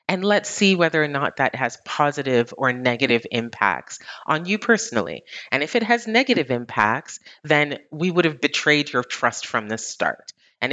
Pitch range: 120-160 Hz